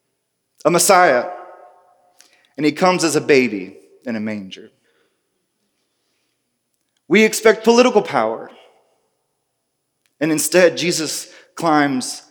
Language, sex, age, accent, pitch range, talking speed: English, male, 30-49, American, 135-185 Hz, 95 wpm